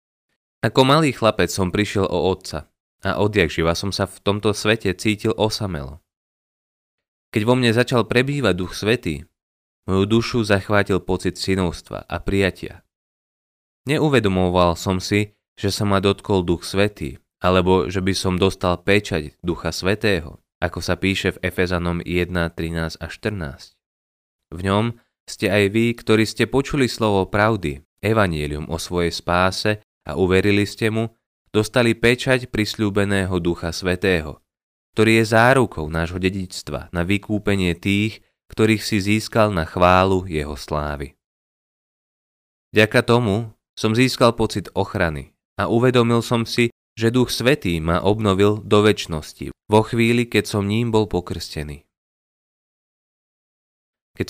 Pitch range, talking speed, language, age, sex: 90-110 Hz, 130 wpm, Slovak, 20-39, male